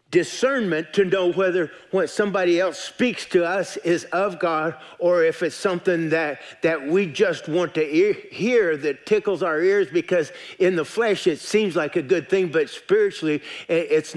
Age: 50-69